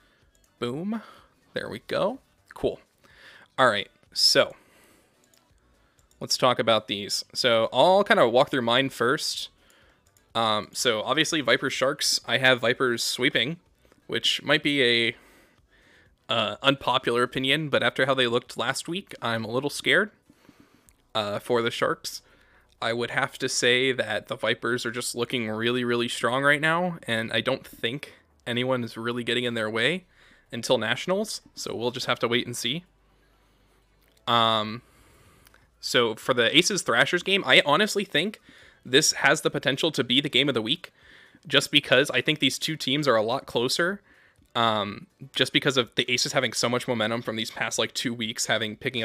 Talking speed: 170 wpm